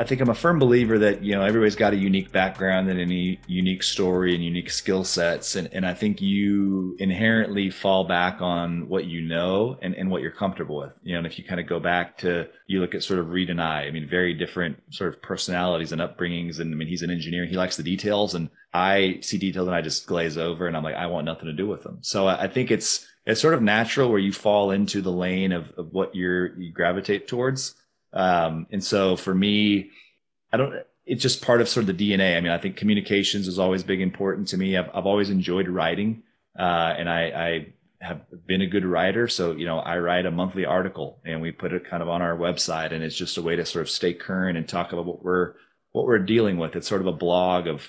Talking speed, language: 250 wpm, English